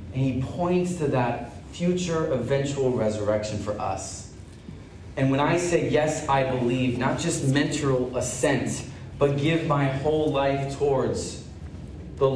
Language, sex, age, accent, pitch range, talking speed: English, male, 30-49, American, 115-155 Hz, 135 wpm